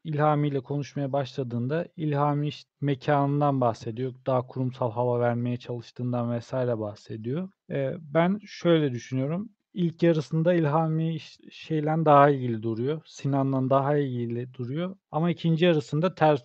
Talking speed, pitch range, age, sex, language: 130 wpm, 130-165 Hz, 40-59, male, Turkish